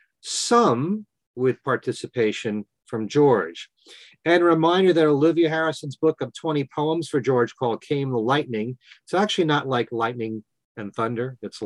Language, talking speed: English, 150 wpm